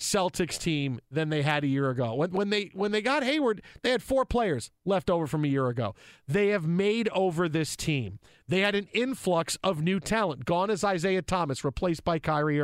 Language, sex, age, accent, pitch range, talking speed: English, male, 40-59, American, 155-205 Hz, 215 wpm